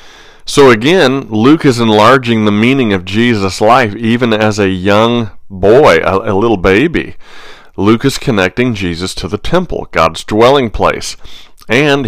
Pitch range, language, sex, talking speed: 95-120 Hz, English, male, 150 wpm